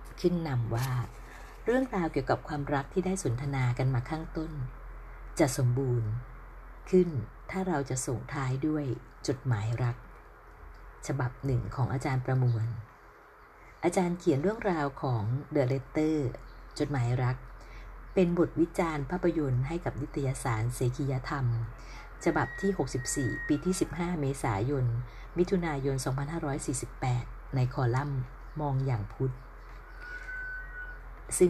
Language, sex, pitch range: Thai, female, 125-160 Hz